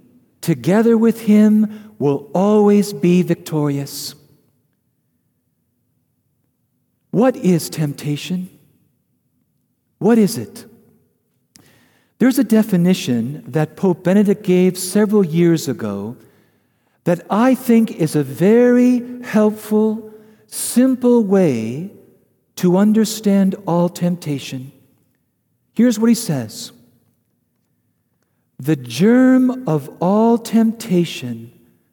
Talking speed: 85 wpm